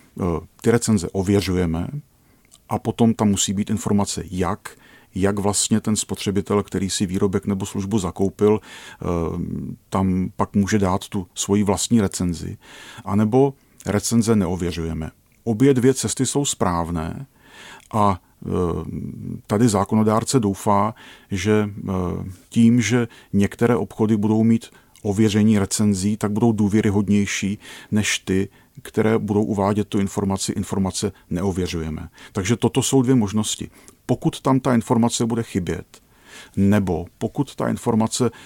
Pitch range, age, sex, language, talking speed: 95-115 Hz, 40-59, male, Czech, 120 wpm